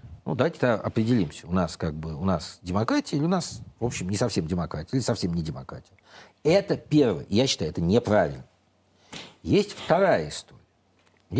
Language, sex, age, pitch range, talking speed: Russian, male, 50-69, 90-125 Hz, 165 wpm